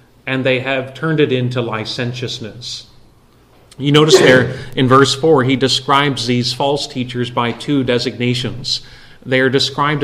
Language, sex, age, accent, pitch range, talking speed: English, male, 30-49, American, 120-140 Hz, 145 wpm